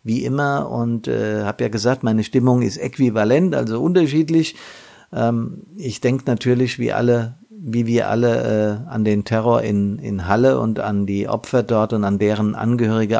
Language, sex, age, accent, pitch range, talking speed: German, male, 50-69, German, 110-130 Hz, 175 wpm